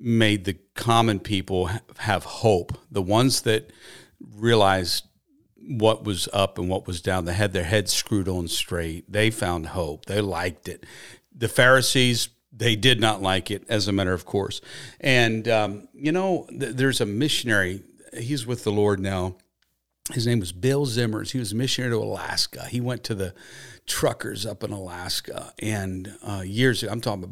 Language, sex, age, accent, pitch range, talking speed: English, male, 50-69, American, 95-120 Hz, 175 wpm